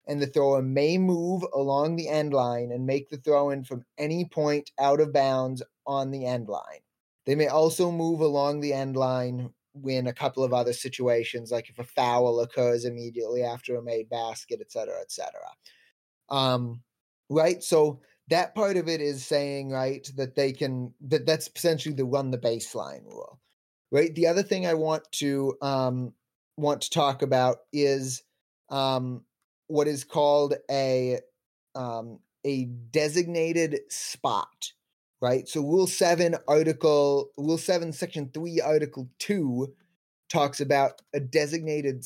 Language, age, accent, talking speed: English, 30-49, American, 155 wpm